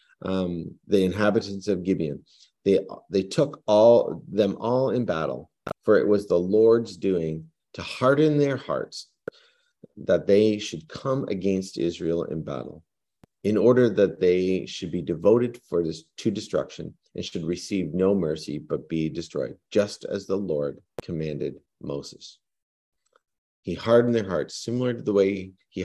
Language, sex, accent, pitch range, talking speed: English, male, American, 85-110 Hz, 150 wpm